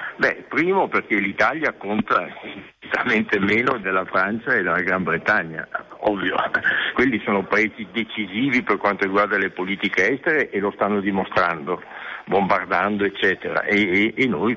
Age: 60-79